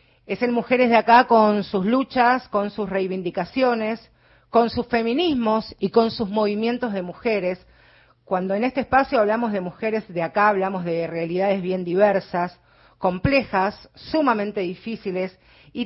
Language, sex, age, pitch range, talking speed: Spanish, female, 40-59, 180-235 Hz, 145 wpm